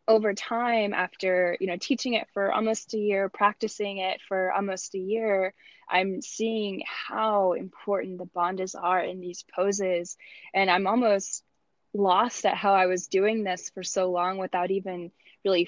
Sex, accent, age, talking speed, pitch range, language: female, American, 10-29, 165 wpm, 185-215 Hz, English